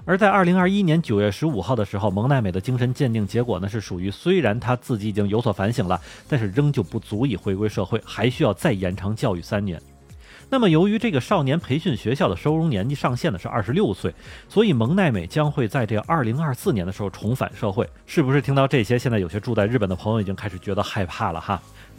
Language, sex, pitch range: Chinese, male, 105-145 Hz